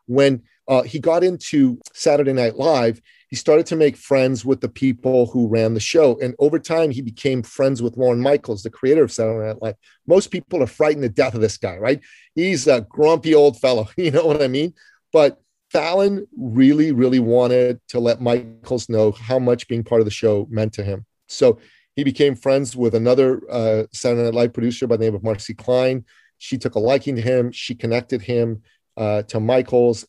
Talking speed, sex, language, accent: 205 wpm, male, English, American